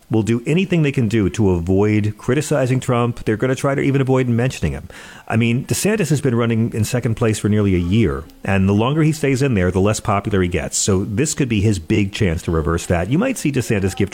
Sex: male